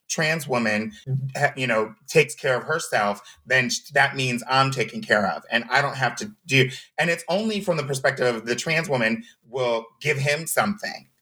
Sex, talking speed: male, 185 wpm